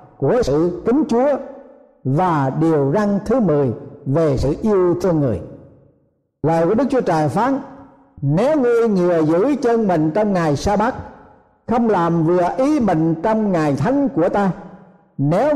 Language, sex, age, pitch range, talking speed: Vietnamese, male, 60-79, 165-230 Hz, 160 wpm